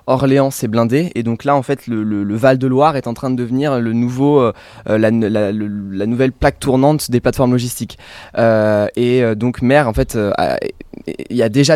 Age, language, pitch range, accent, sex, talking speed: 20-39, French, 115-140 Hz, French, male, 220 wpm